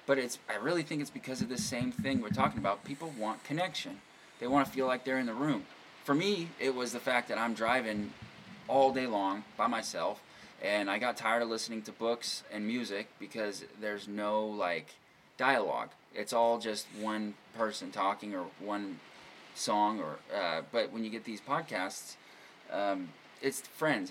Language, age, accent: English, 20-39, American